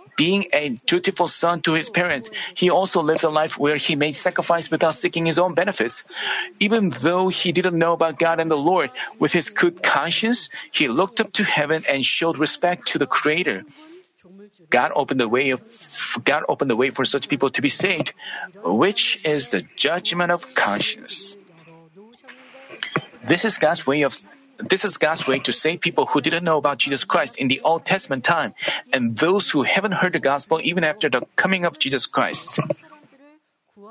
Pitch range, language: 150-200 Hz, Korean